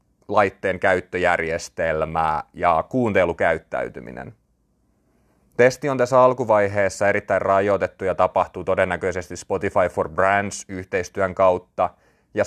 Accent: native